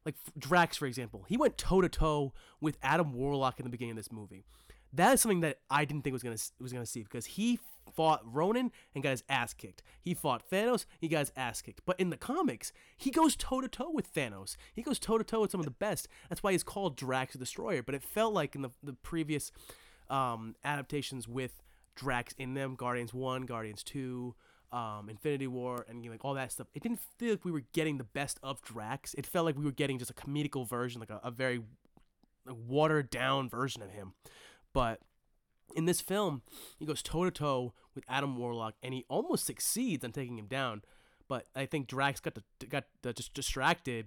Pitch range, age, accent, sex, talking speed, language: 120-155 Hz, 20-39, American, male, 210 wpm, English